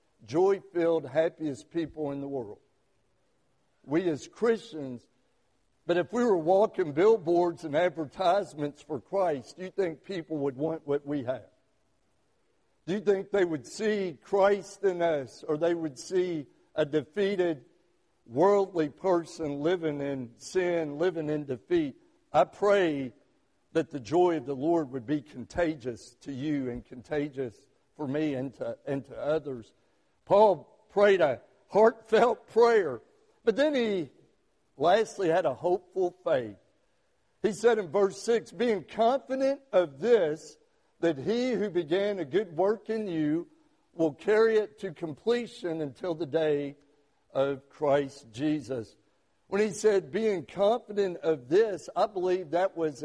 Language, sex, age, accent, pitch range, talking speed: English, male, 60-79, American, 150-205 Hz, 145 wpm